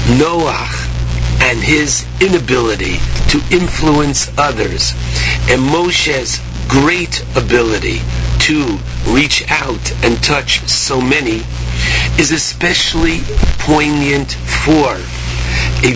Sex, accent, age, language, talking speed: male, American, 50-69, English, 85 wpm